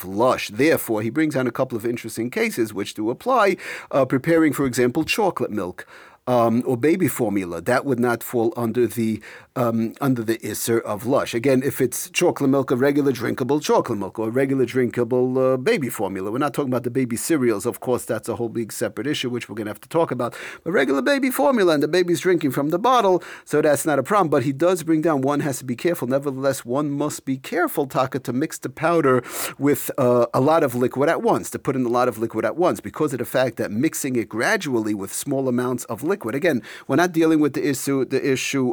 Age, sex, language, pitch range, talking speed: 40-59, male, English, 120-150 Hz, 230 wpm